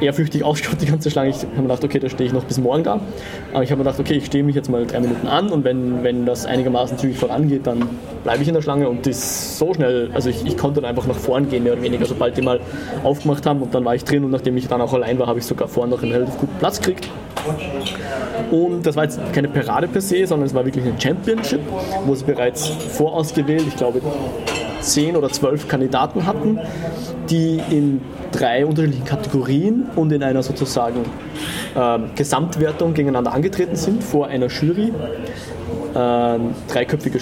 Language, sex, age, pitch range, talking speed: German, male, 20-39, 125-155 Hz, 210 wpm